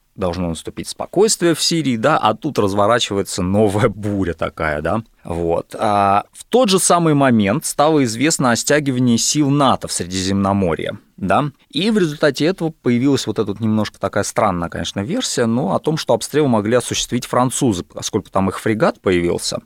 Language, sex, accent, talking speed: Russian, male, native, 160 wpm